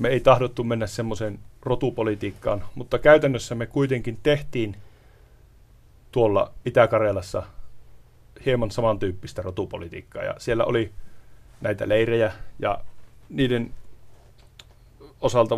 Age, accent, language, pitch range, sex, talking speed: 30-49, native, Finnish, 110-125 Hz, male, 90 wpm